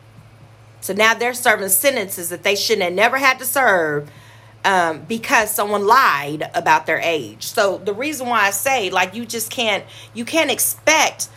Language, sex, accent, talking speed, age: English, female, American, 175 wpm, 40-59